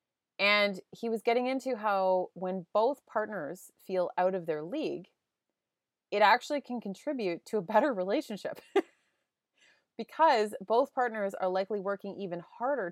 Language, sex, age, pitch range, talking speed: English, female, 30-49, 170-220 Hz, 140 wpm